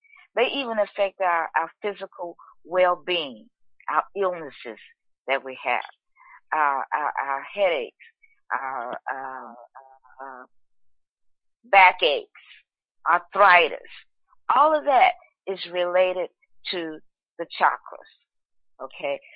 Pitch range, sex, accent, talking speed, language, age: 155-255 Hz, female, American, 95 wpm, English, 50-69